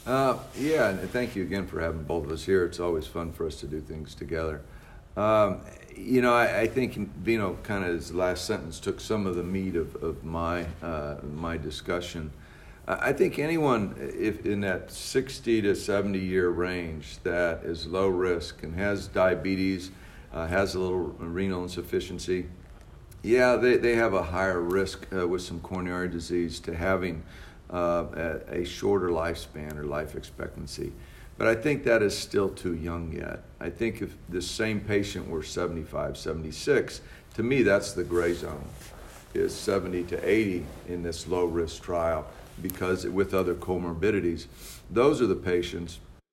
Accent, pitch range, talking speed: American, 85-95 Hz, 175 wpm